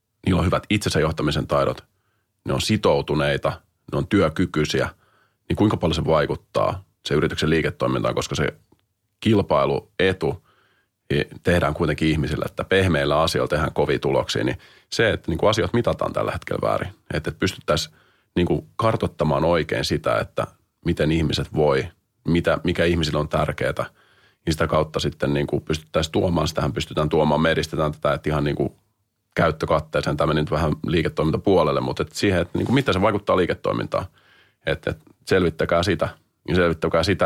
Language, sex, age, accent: English, male, 30-49, Finnish